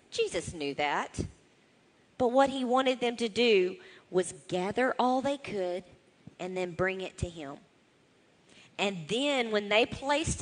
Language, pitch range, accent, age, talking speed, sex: English, 165-230 Hz, American, 40-59, 150 wpm, female